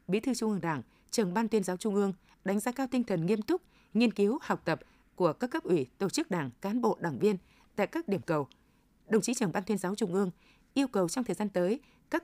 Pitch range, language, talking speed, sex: 185-245 Hz, Vietnamese, 255 wpm, female